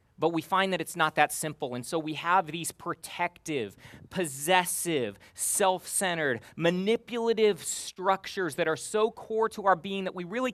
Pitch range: 160-205 Hz